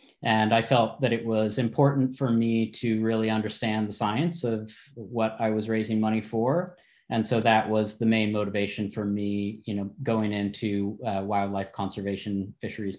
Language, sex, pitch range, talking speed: English, male, 110-130 Hz, 175 wpm